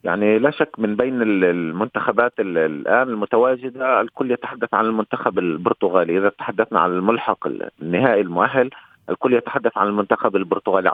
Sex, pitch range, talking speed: male, 110-130 Hz, 130 wpm